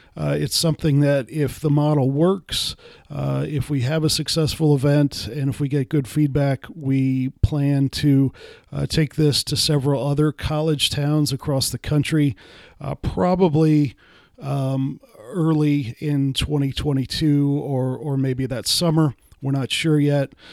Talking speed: 145 wpm